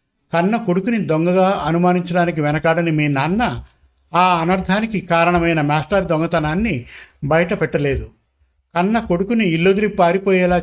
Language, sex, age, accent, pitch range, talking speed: Telugu, male, 50-69, native, 155-185 Hz, 100 wpm